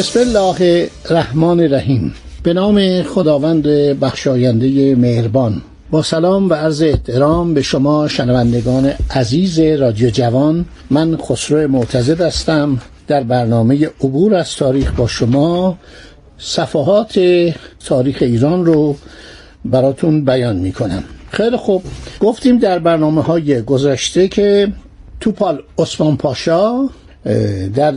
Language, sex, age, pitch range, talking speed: Persian, male, 60-79, 135-185 Hz, 110 wpm